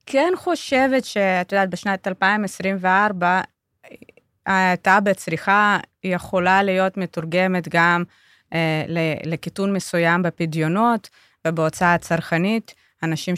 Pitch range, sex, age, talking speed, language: 165-205 Hz, female, 20-39, 85 wpm, Hebrew